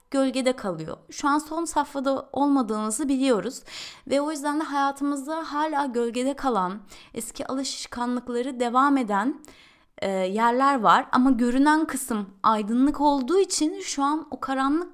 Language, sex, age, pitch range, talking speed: Turkish, female, 30-49, 200-280 Hz, 135 wpm